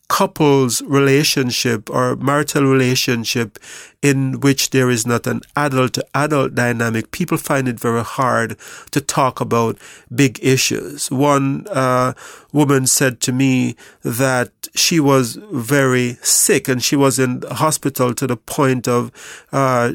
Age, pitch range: 40-59, 125-145 Hz